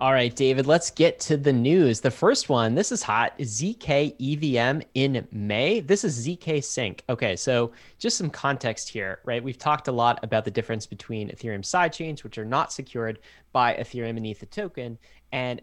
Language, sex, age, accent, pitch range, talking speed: English, male, 20-39, American, 115-150 Hz, 190 wpm